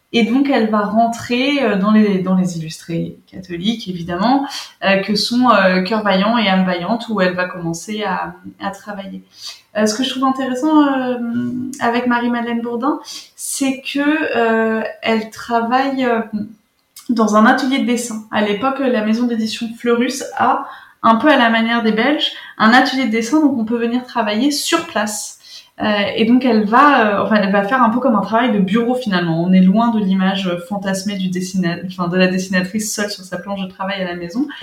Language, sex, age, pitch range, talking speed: French, female, 20-39, 195-250 Hz, 195 wpm